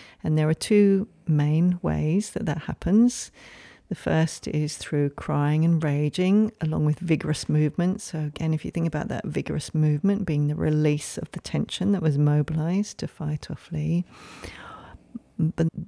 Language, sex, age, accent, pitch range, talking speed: English, female, 40-59, British, 150-170 Hz, 165 wpm